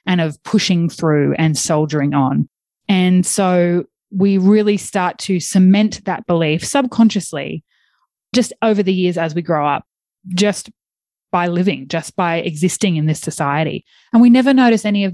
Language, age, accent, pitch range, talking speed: English, 20-39, Australian, 165-205 Hz, 160 wpm